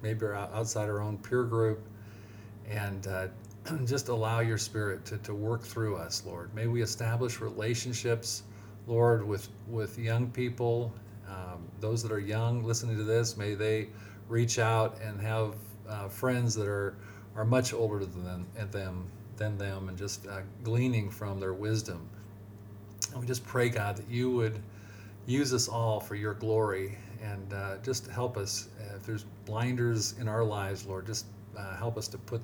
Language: English